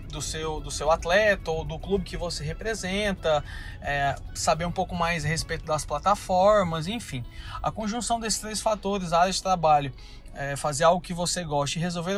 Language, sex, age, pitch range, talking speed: Portuguese, male, 20-39, 145-185 Hz, 165 wpm